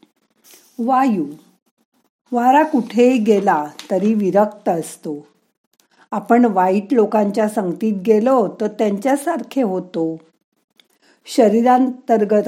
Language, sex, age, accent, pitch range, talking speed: Marathi, female, 50-69, native, 185-245 Hz, 75 wpm